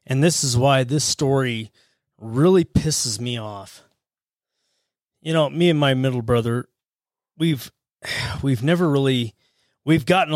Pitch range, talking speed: 125-150 Hz, 135 wpm